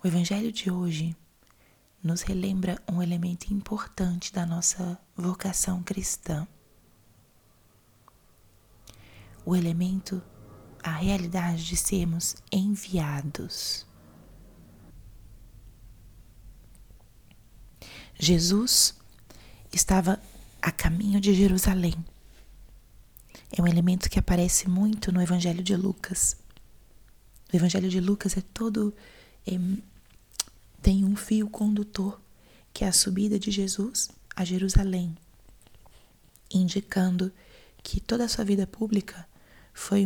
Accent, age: Brazilian, 20-39